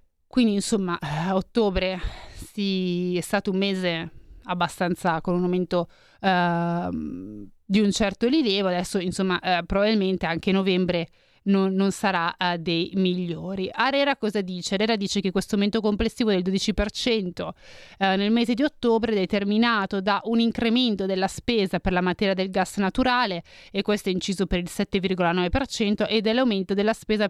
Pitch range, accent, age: 185-220 Hz, native, 30-49